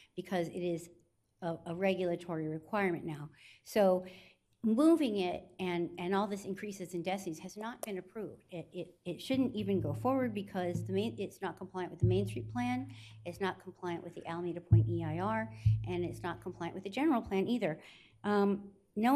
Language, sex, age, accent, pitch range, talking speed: English, female, 50-69, American, 170-200 Hz, 185 wpm